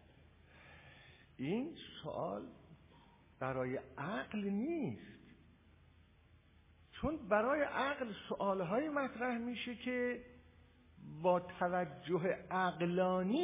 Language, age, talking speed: Persian, 50-69, 70 wpm